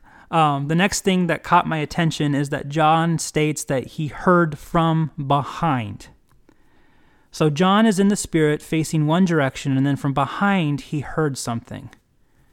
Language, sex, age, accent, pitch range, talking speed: English, male, 30-49, American, 140-185 Hz, 160 wpm